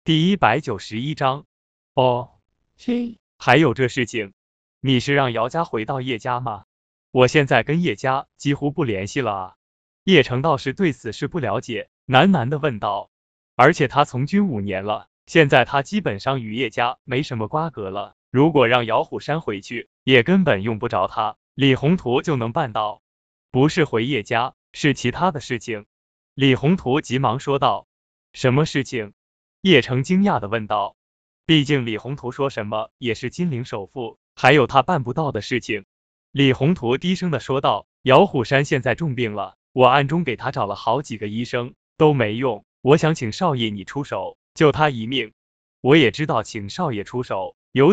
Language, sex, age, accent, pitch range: Chinese, male, 20-39, native, 110-150 Hz